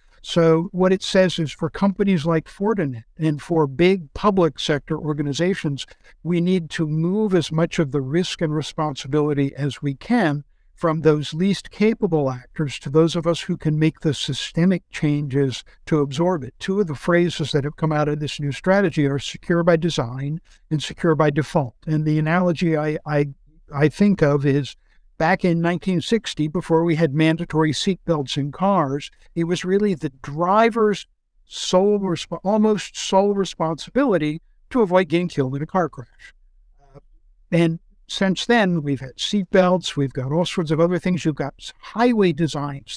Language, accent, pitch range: English, American, 150-180 Hz